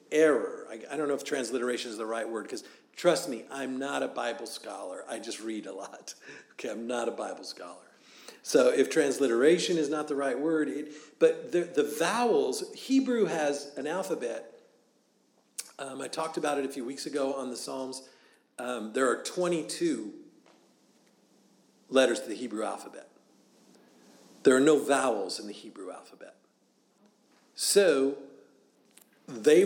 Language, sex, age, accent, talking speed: English, male, 50-69, American, 155 wpm